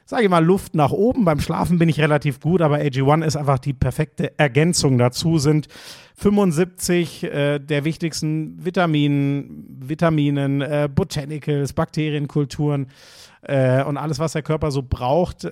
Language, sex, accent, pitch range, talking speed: German, male, German, 130-165 Hz, 145 wpm